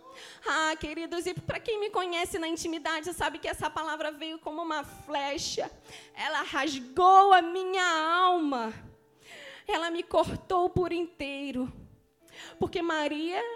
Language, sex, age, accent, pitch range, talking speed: Portuguese, female, 20-39, Brazilian, 310-425 Hz, 130 wpm